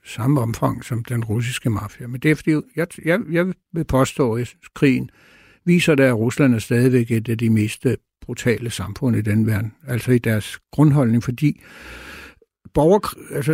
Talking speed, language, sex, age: 170 wpm, Danish, male, 60-79